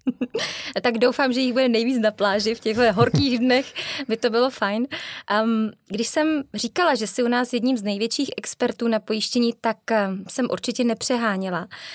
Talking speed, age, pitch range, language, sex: 170 wpm, 20-39, 215-250 Hz, Czech, female